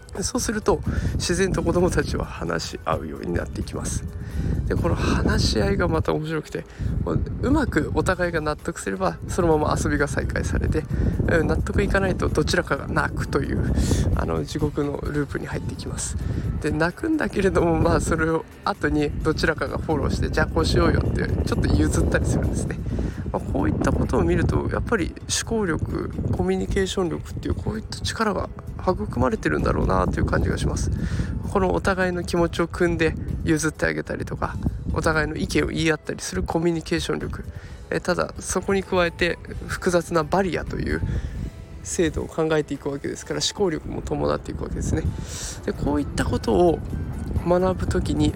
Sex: male